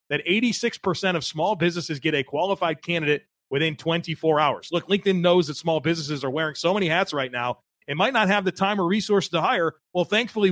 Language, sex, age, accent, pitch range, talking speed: English, male, 30-49, American, 150-190 Hz, 210 wpm